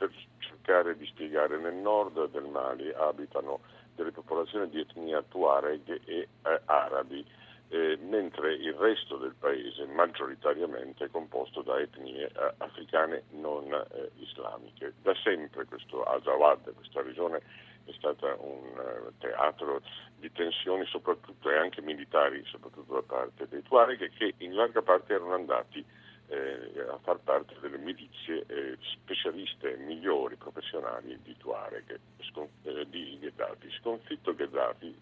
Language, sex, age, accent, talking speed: Italian, male, 60-79, native, 130 wpm